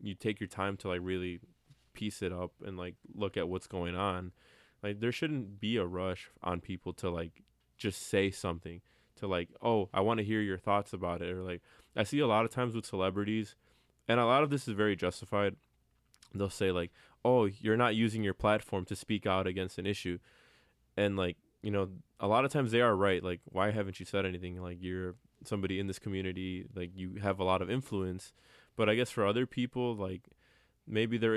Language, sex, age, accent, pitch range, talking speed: English, male, 20-39, American, 90-115 Hz, 215 wpm